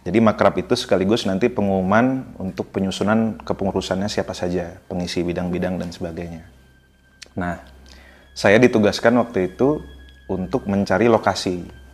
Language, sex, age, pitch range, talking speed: Indonesian, male, 30-49, 85-100 Hz, 115 wpm